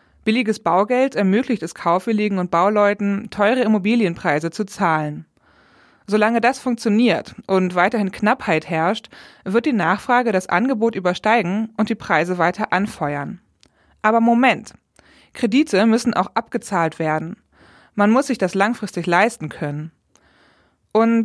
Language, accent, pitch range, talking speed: German, German, 175-220 Hz, 125 wpm